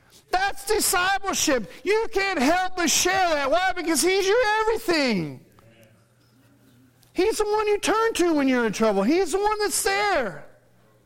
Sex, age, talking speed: male, 40-59, 150 wpm